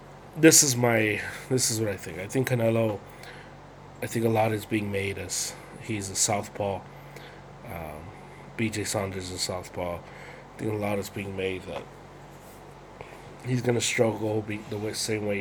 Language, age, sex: English, 30-49, male